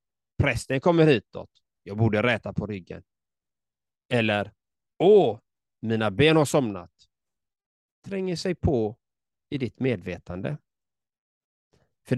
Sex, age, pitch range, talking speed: male, 30-49, 105-145 Hz, 105 wpm